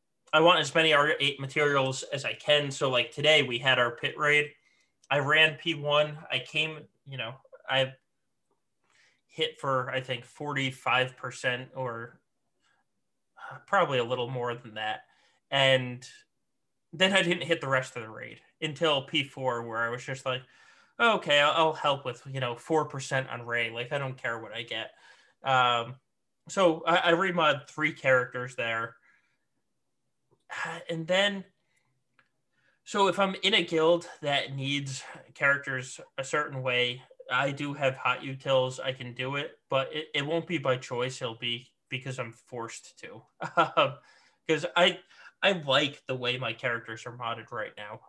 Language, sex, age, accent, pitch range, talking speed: English, male, 20-39, American, 125-150 Hz, 155 wpm